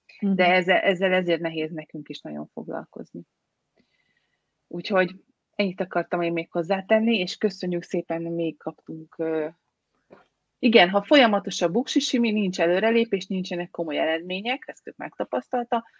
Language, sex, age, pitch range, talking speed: Hungarian, female, 30-49, 170-230 Hz, 130 wpm